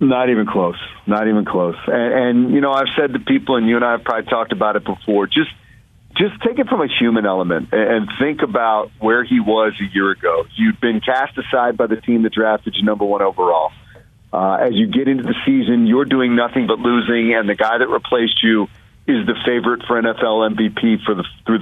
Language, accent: English, American